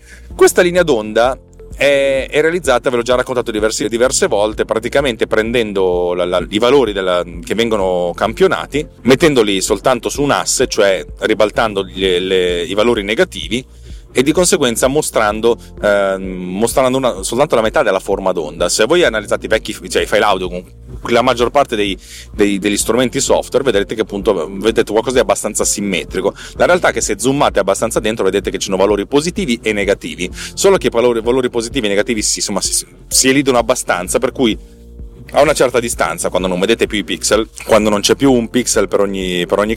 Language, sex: Italian, male